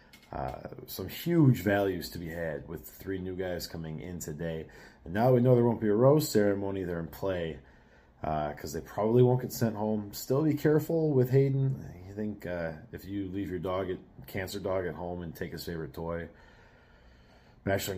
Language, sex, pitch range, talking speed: English, male, 80-110 Hz, 195 wpm